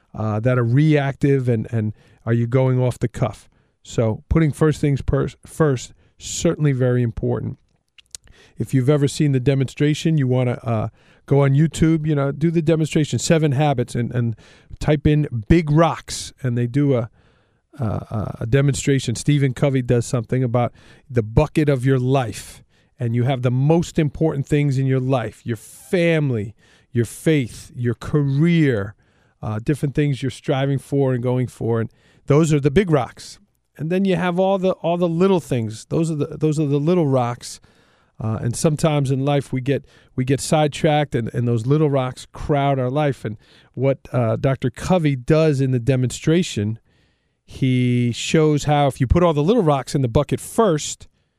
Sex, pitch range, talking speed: male, 120-150 Hz, 180 wpm